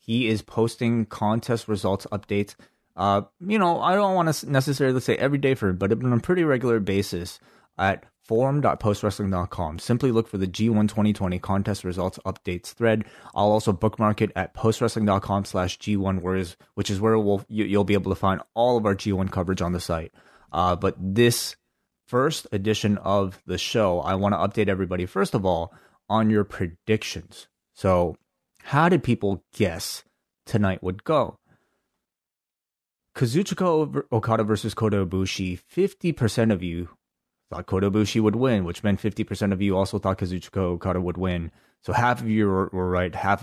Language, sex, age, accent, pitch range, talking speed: English, male, 30-49, American, 95-115 Hz, 165 wpm